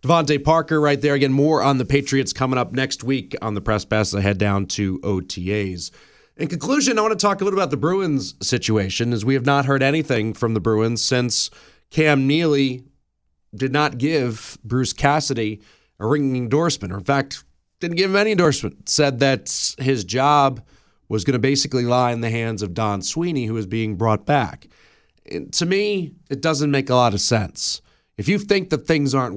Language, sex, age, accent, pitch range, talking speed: English, male, 30-49, American, 105-145 Hz, 200 wpm